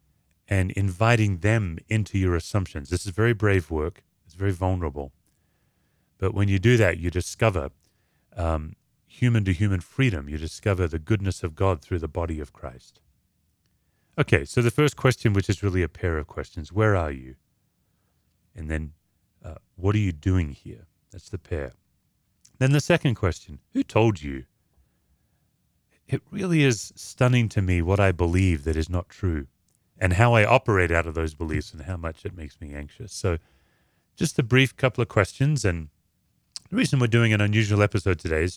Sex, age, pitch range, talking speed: male, 30-49, 85-105 Hz, 175 wpm